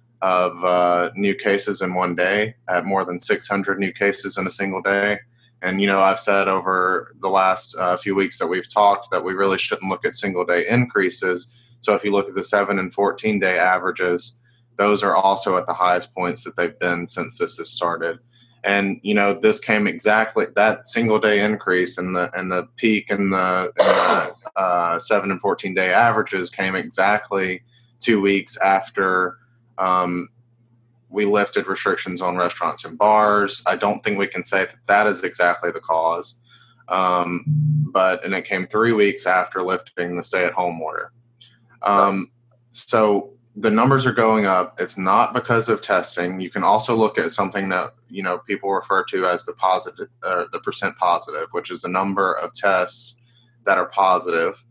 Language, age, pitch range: English, 20-39, 90-120 Hz